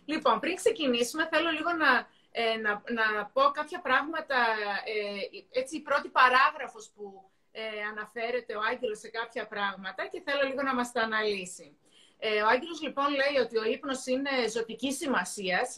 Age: 30-49